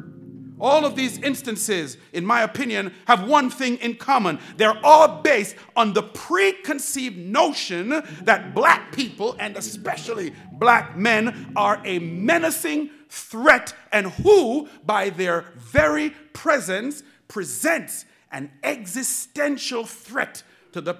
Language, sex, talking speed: English, male, 120 wpm